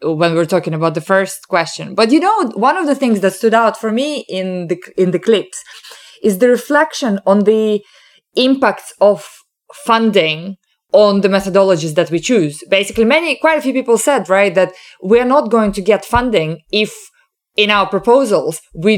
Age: 20-39